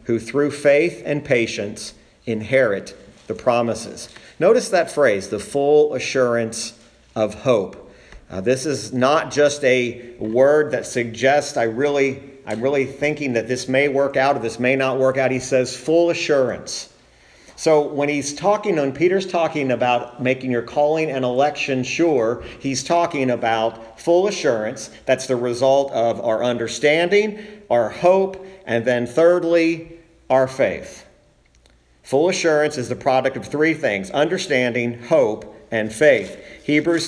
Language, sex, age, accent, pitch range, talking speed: English, male, 50-69, American, 115-145 Hz, 145 wpm